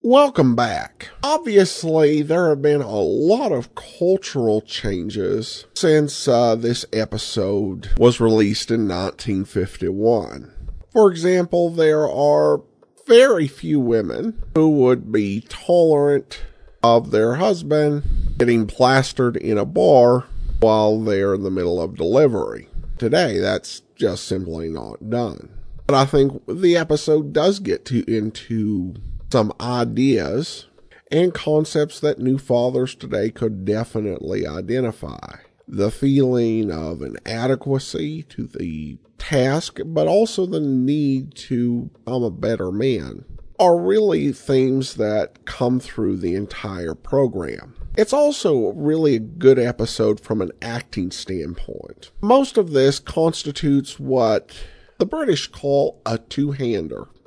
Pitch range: 110-150 Hz